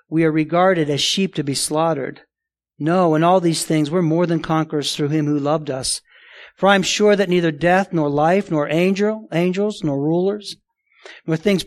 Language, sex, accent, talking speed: English, male, American, 190 wpm